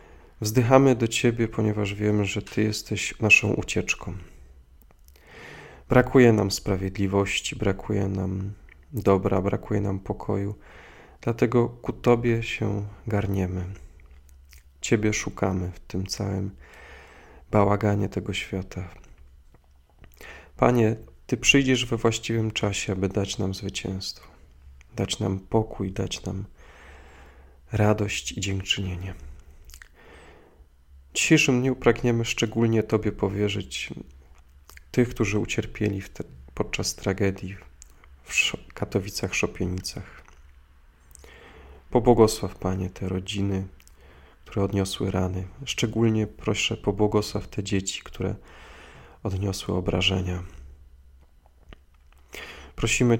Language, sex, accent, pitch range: Polish, male, native, 70-105 Hz